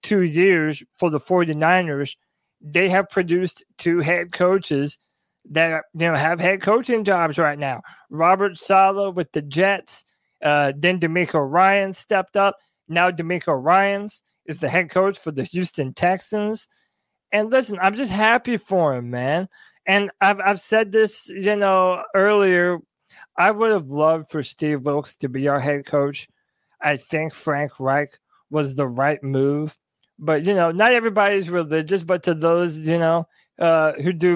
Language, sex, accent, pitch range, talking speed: English, male, American, 155-190 Hz, 160 wpm